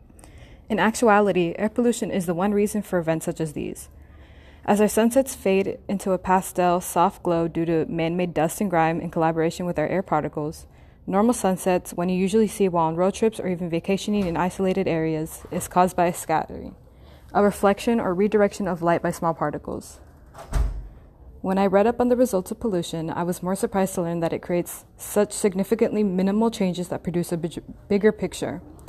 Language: English